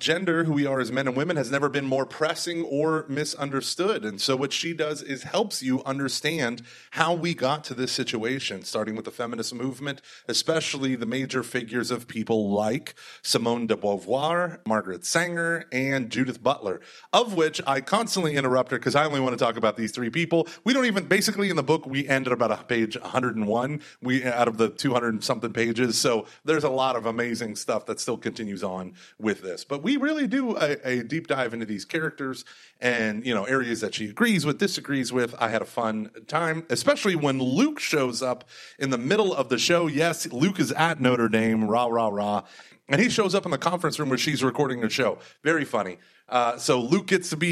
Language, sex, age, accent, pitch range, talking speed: English, male, 30-49, American, 120-170 Hz, 210 wpm